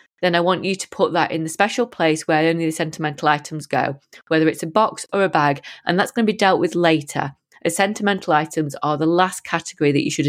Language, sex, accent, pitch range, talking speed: English, female, British, 160-215 Hz, 245 wpm